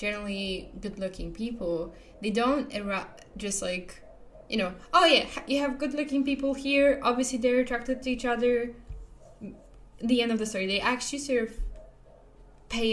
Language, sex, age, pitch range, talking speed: English, female, 10-29, 195-255 Hz, 155 wpm